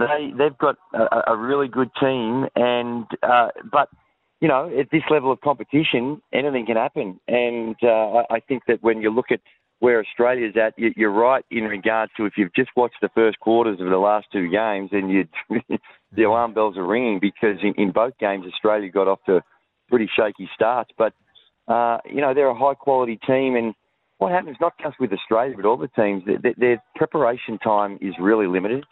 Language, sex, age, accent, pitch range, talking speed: English, male, 40-59, Australian, 100-120 Hz, 200 wpm